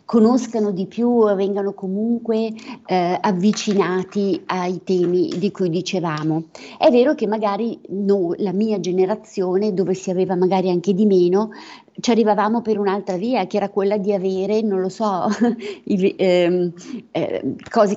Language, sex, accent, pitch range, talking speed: Italian, female, native, 185-210 Hz, 145 wpm